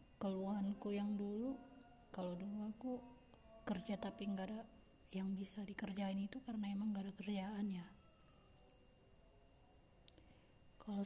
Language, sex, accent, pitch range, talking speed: Indonesian, female, native, 185-220 Hz, 115 wpm